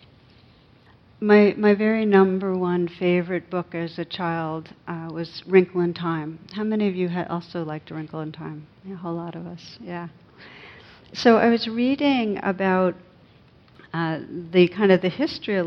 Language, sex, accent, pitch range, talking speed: English, female, American, 170-205 Hz, 170 wpm